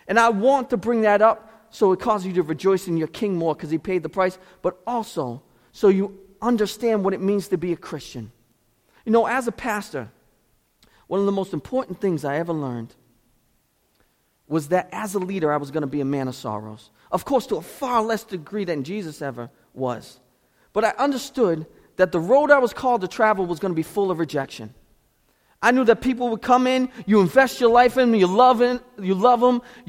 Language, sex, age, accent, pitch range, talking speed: English, male, 30-49, American, 180-245 Hz, 215 wpm